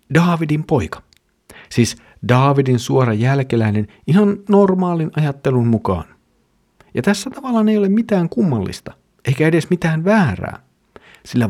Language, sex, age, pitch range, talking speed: Finnish, male, 50-69, 110-170 Hz, 115 wpm